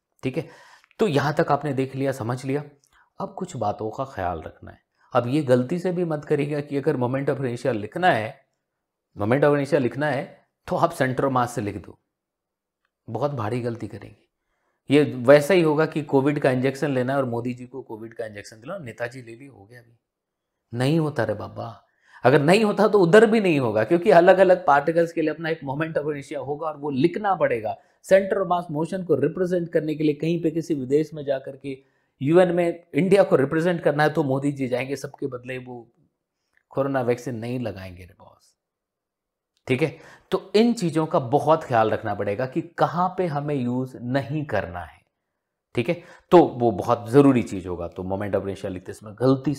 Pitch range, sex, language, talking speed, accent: 120-175 Hz, male, Hindi, 145 wpm, native